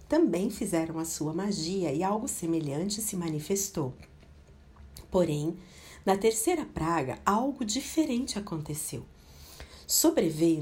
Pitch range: 160-215 Hz